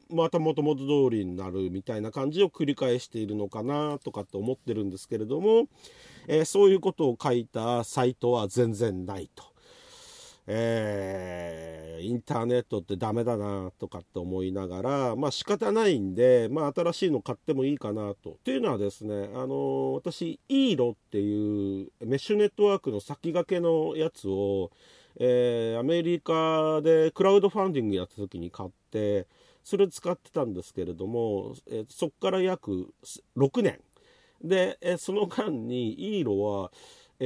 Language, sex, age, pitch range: Japanese, male, 40-59, 100-165 Hz